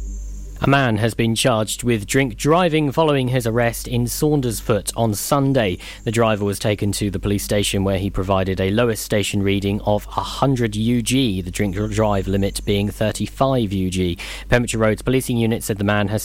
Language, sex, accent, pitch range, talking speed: English, male, British, 105-135 Hz, 175 wpm